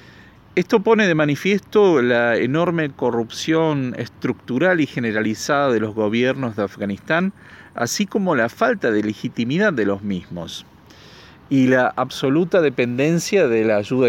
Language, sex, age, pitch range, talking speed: Spanish, male, 40-59, 120-170 Hz, 130 wpm